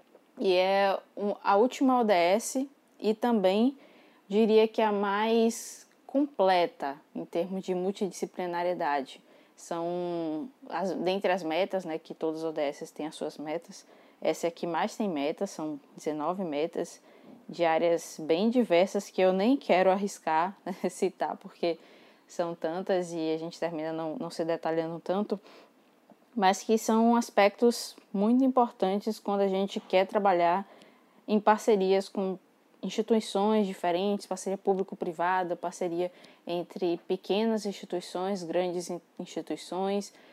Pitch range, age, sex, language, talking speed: 175-215 Hz, 20-39, female, Portuguese, 125 wpm